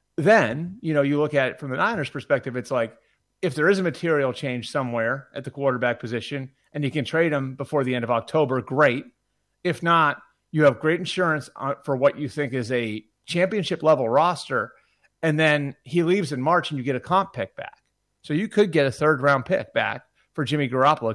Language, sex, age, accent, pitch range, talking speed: English, male, 30-49, American, 125-150 Hz, 215 wpm